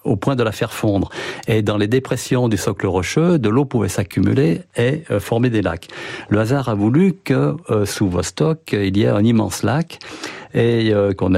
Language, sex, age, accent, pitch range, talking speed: French, male, 50-69, French, 95-130 Hz, 190 wpm